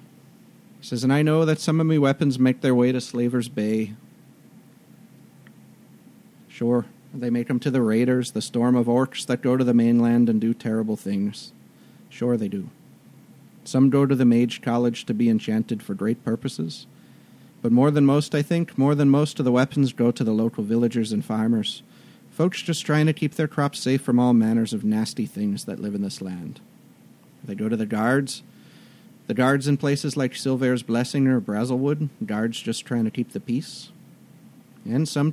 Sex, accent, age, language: male, American, 40-59, English